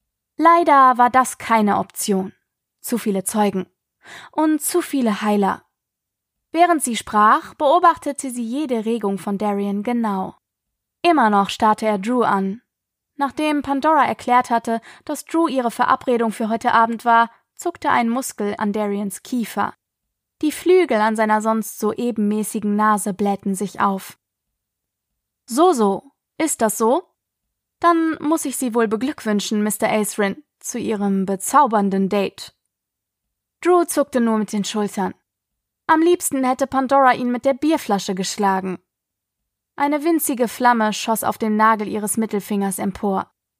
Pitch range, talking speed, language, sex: 210-275 Hz, 135 wpm, German, female